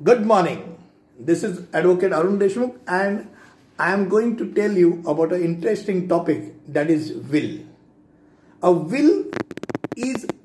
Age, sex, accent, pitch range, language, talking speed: 60-79, male, native, 170-235 Hz, Hindi, 140 wpm